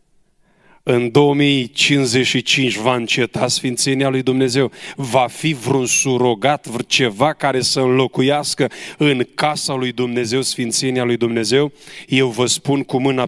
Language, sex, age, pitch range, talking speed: Romanian, male, 30-49, 120-145 Hz, 125 wpm